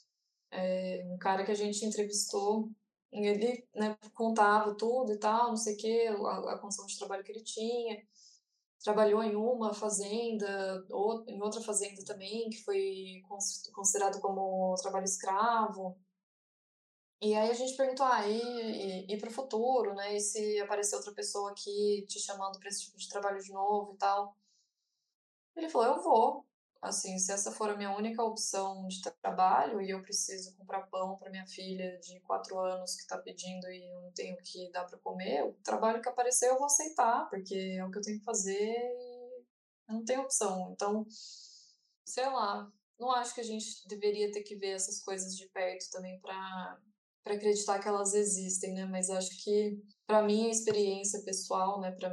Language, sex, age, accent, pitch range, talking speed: Portuguese, female, 10-29, Brazilian, 190-220 Hz, 180 wpm